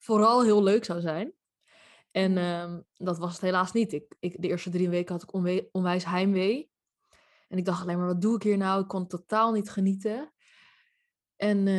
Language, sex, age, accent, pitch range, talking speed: Dutch, female, 20-39, Dutch, 180-205 Hz, 200 wpm